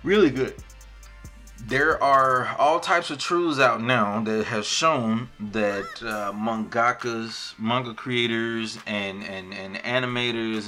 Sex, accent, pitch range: male, American, 105-125 Hz